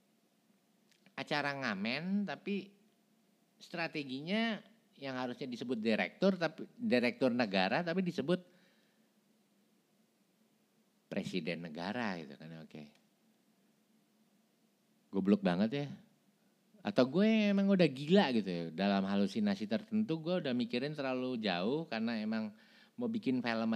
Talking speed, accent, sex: 110 wpm, native, male